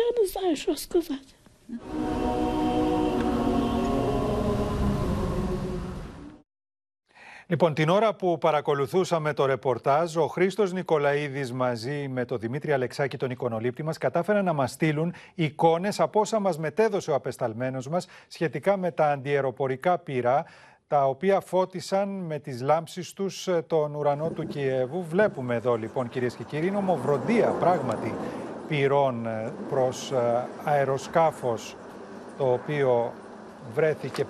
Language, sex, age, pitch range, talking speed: Greek, male, 40-59, 125-180 Hz, 105 wpm